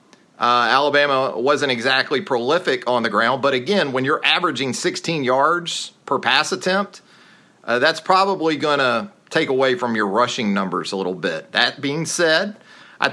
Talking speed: 165 wpm